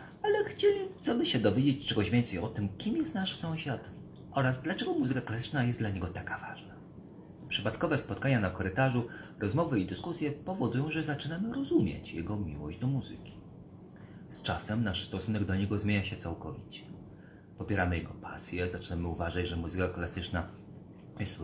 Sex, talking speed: male, 155 wpm